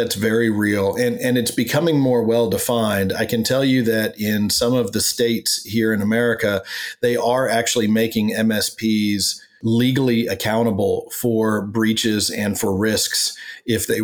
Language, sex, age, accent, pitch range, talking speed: English, male, 40-59, American, 105-125 Hz, 160 wpm